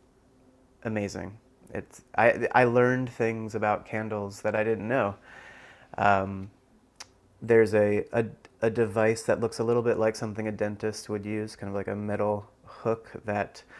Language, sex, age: English, male, 30-49